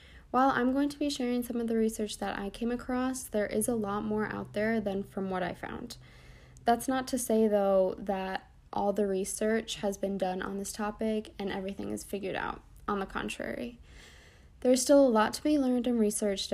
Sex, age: female, 20-39